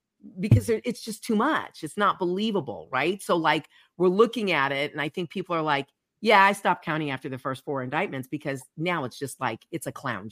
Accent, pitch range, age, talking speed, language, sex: American, 150-205 Hz, 40-59, 220 wpm, English, female